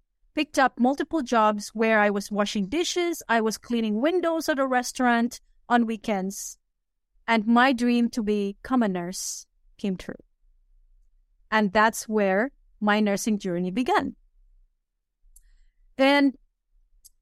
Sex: female